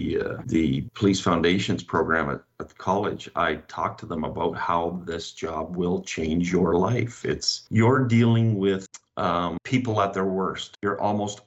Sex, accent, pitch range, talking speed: male, American, 90-105 Hz, 155 wpm